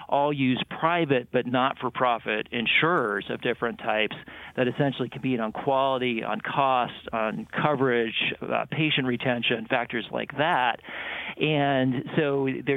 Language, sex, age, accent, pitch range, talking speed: English, male, 40-59, American, 115-140 Hz, 130 wpm